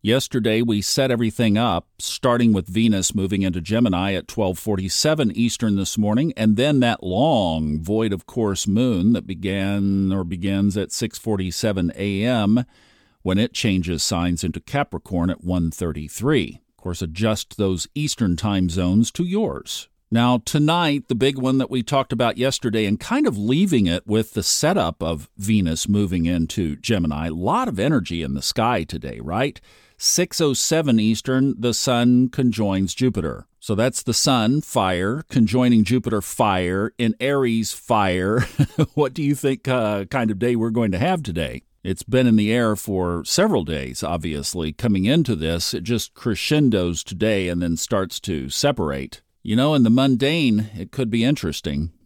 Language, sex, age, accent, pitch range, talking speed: English, male, 50-69, American, 90-120 Hz, 170 wpm